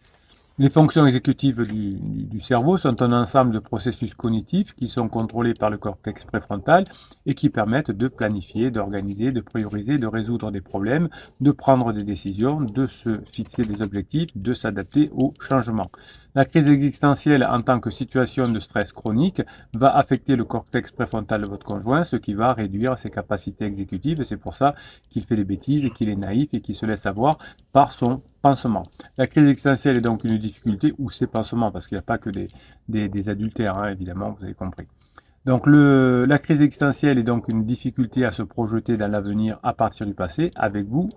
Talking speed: 195 wpm